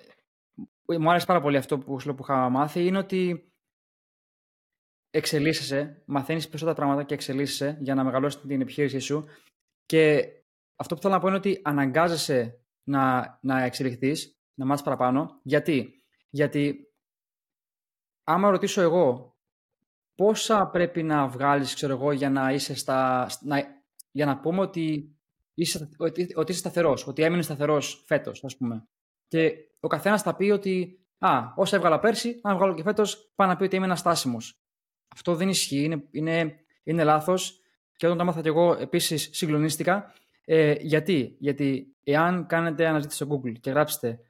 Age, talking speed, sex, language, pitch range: 20-39, 155 wpm, male, Greek, 140-175 Hz